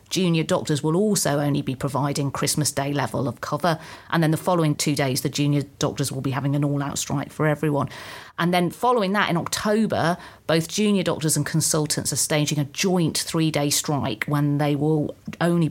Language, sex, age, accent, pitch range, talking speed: English, female, 40-59, British, 145-165 Hz, 190 wpm